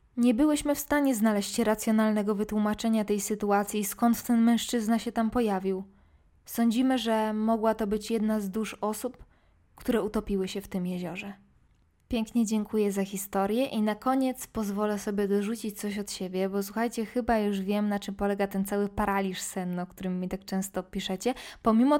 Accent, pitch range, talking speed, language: native, 200-245 Hz, 170 wpm, Polish